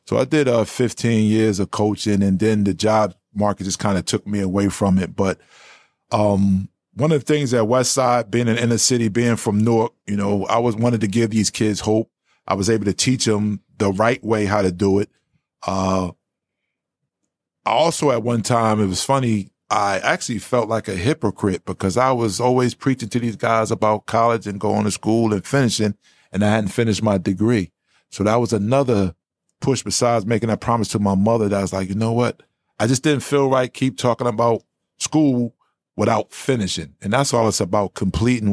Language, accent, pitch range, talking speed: English, American, 100-120 Hz, 205 wpm